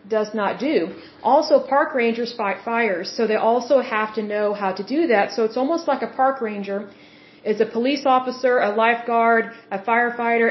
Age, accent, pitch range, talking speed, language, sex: 40-59, American, 215-250 Hz, 190 wpm, German, female